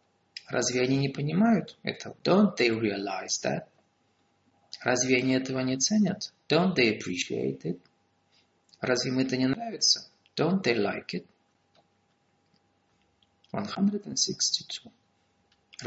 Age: 30-49